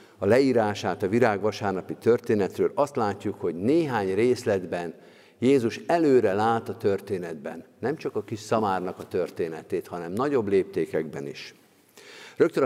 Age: 50-69